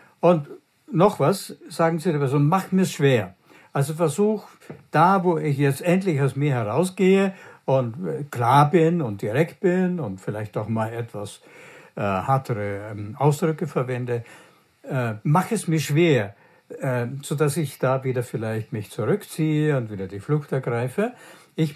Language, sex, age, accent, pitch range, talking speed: German, male, 60-79, German, 130-180 Hz, 155 wpm